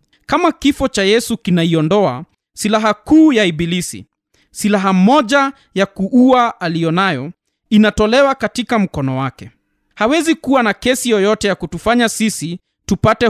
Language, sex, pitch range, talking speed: Swahili, male, 165-230 Hz, 120 wpm